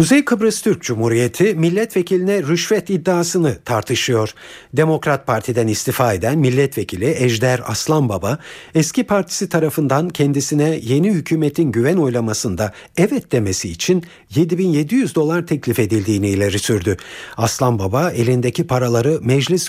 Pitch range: 115-170 Hz